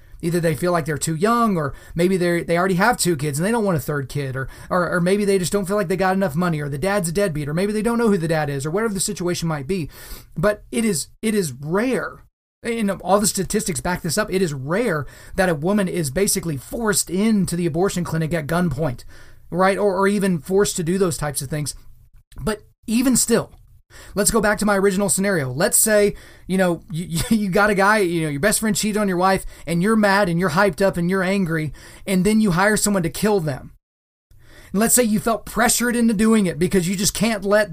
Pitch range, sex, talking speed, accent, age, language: 165-210 Hz, male, 240 wpm, American, 30-49, English